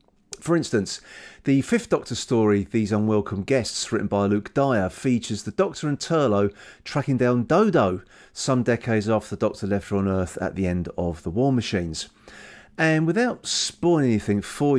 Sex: male